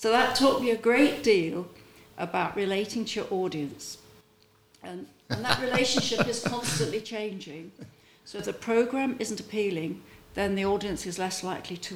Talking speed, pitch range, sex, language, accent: 160 wpm, 160-220 Hz, female, English, British